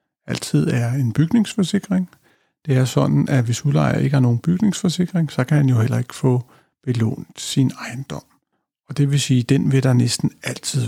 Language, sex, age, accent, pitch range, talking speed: Danish, male, 60-79, native, 120-165 Hz, 190 wpm